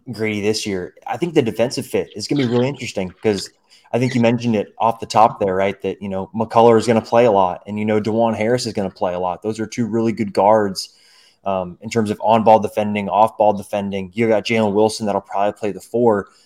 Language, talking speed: English, 260 wpm